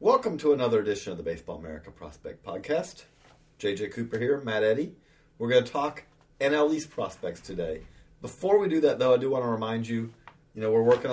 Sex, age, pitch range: male, 40-59, 110-145 Hz